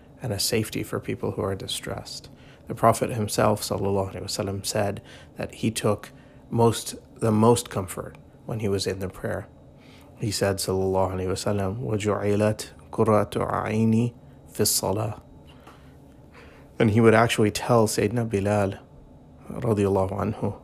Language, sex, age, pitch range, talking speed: English, male, 30-49, 95-115 Hz, 115 wpm